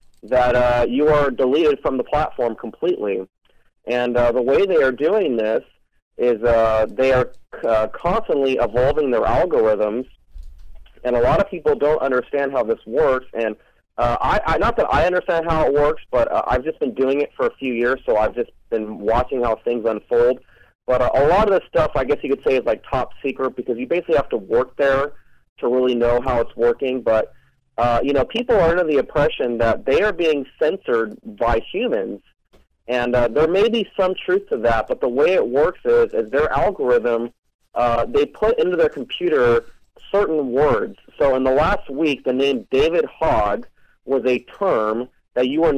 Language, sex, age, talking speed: English, male, 30-49, 200 wpm